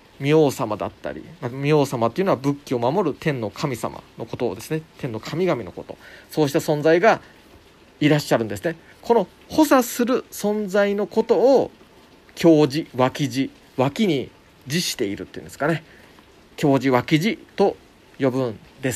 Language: Japanese